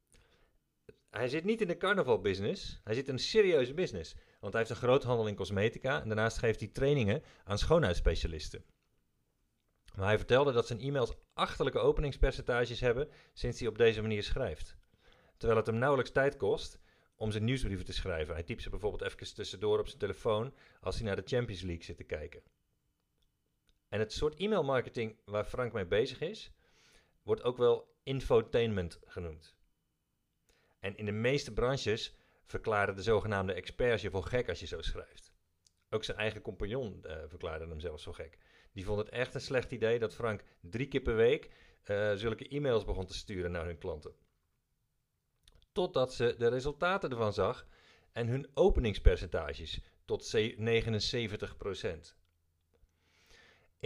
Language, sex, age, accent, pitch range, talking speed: Dutch, male, 40-59, Dutch, 100-140 Hz, 160 wpm